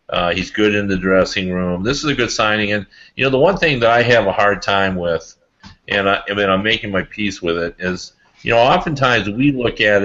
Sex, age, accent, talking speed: male, 40-59, American, 250 wpm